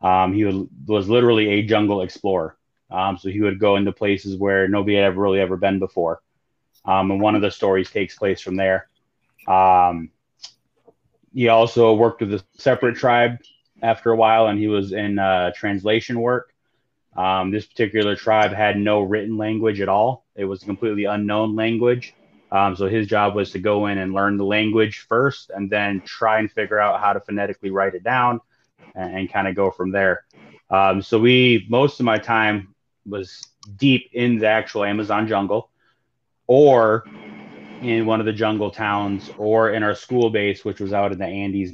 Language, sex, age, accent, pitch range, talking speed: English, male, 20-39, American, 95-110 Hz, 185 wpm